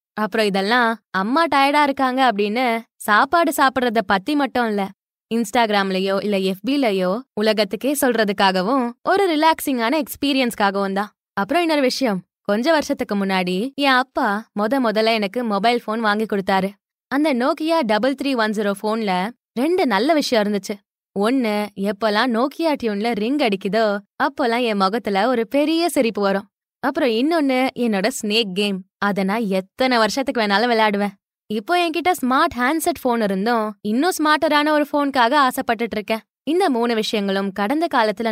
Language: Tamil